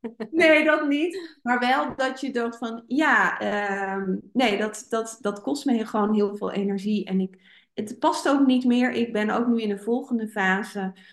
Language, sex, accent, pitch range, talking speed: Dutch, female, Dutch, 190-235 Hz, 185 wpm